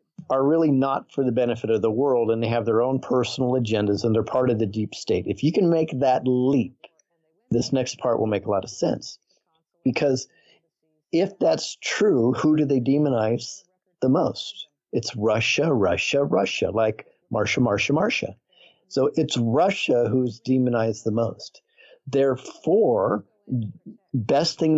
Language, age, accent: English, 50-69, American